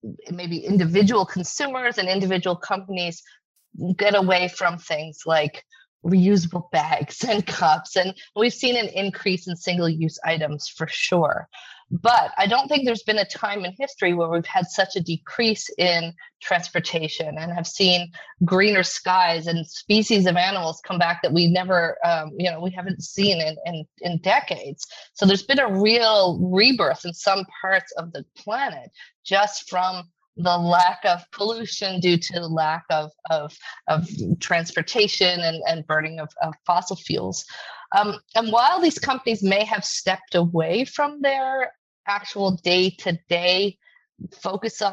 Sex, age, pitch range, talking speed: female, 30-49, 170-215 Hz, 155 wpm